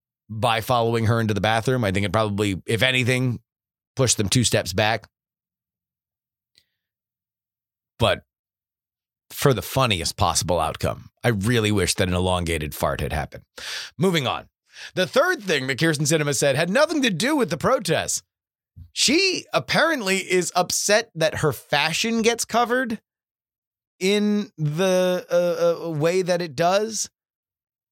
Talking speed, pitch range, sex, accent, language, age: 140 wpm, 110-180 Hz, male, American, English, 30-49